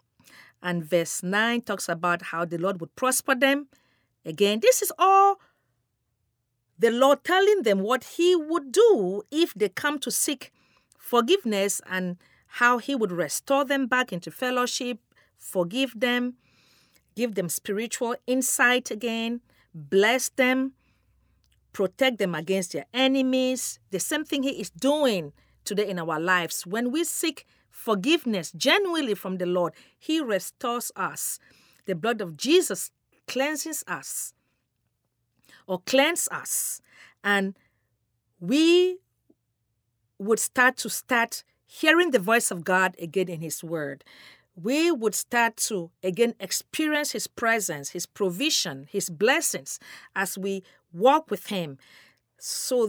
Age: 40-59